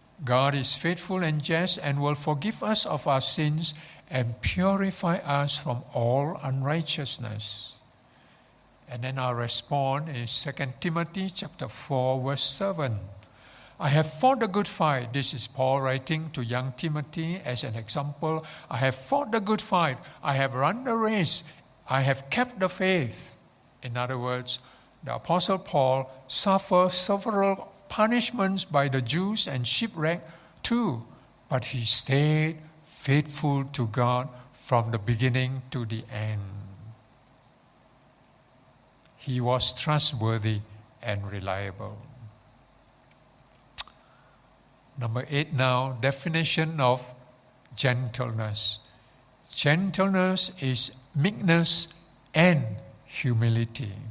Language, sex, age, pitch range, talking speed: English, male, 60-79, 125-160 Hz, 115 wpm